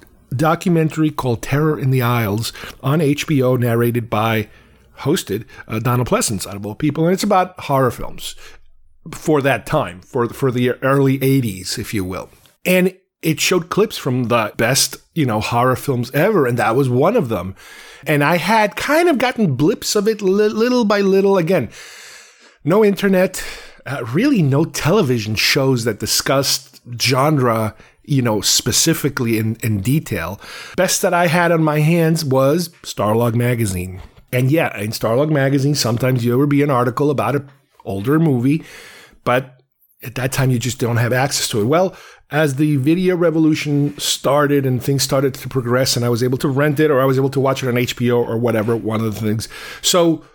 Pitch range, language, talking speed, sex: 120-155 Hz, English, 180 wpm, male